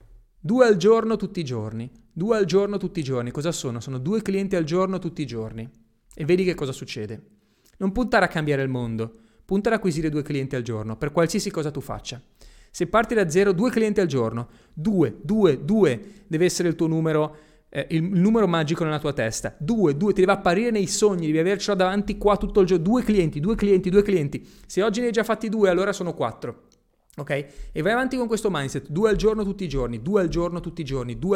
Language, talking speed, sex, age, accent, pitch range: Italian, 225 wpm, male, 30-49, native, 135-195 Hz